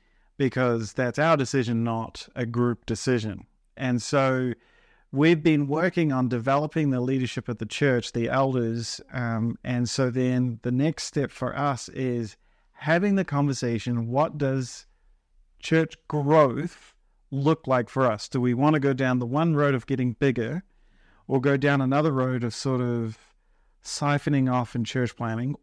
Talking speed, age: 160 wpm, 40-59